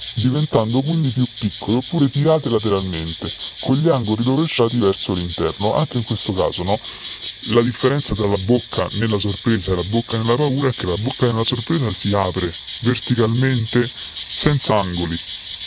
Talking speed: 155 wpm